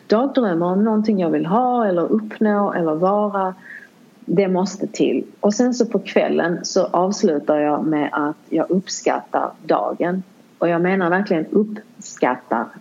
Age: 30-49